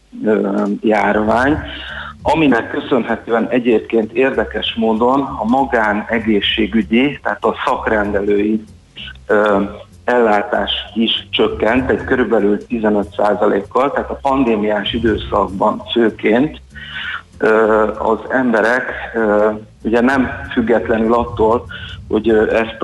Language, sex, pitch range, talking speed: Hungarian, male, 105-115 Hz, 80 wpm